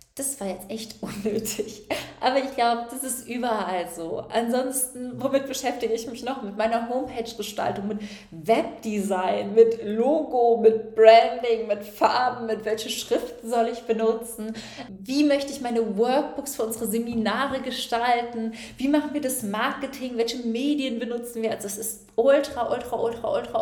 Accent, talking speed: German, 150 wpm